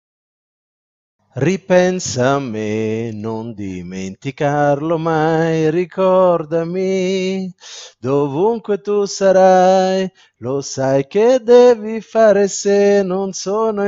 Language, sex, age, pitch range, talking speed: Italian, male, 30-49, 115-180 Hz, 80 wpm